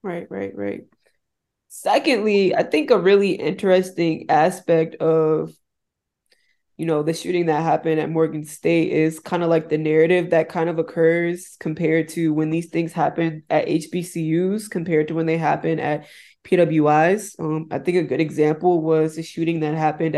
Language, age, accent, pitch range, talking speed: English, 20-39, American, 160-180 Hz, 165 wpm